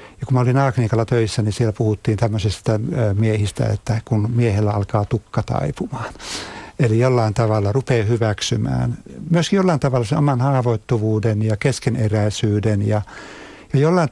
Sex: male